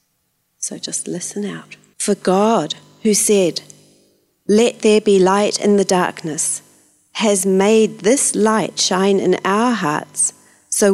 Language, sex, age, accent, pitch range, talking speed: English, female, 40-59, British, 175-210 Hz, 130 wpm